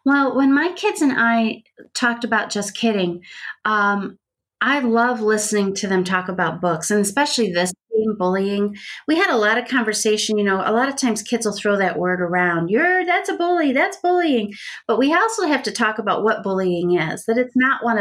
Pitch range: 195-240 Hz